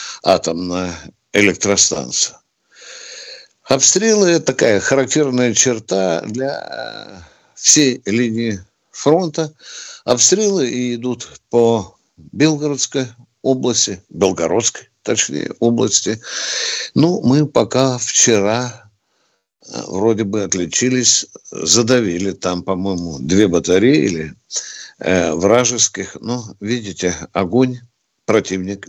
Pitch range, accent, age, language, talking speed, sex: 100-135 Hz, native, 60-79, Russian, 80 wpm, male